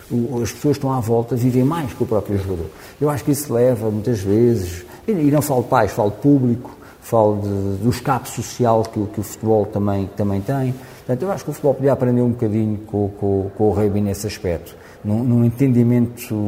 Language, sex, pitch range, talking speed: Portuguese, male, 95-115 Hz, 210 wpm